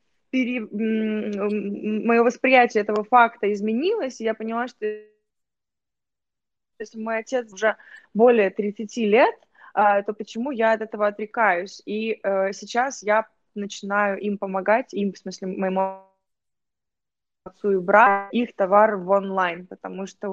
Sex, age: female, 20-39